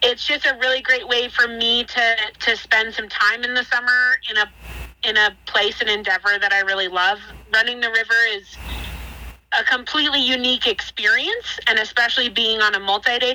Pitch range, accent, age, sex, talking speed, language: 210-240 Hz, American, 30-49, female, 180 wpm, English